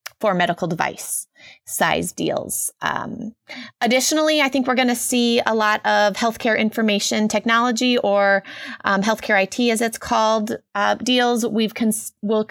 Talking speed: 150 wpm